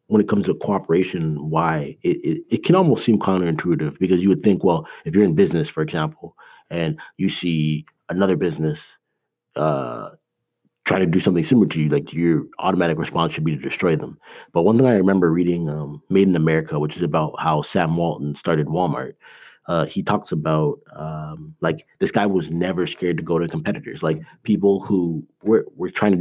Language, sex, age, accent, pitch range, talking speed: English, male, 30-49, American, 80-100 Hz, 195 wpm